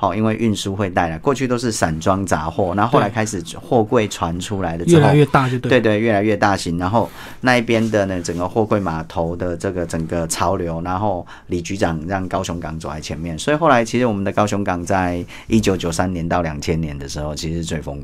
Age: 40-59